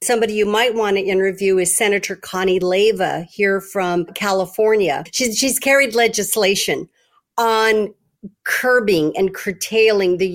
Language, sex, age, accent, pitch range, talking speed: English, female, 50-69, American, 190-235 Hz, 130 wpm